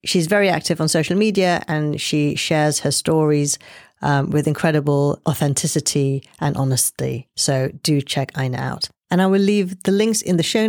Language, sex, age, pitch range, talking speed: English, female, 40-59, 145-195 Hz, 175 wpm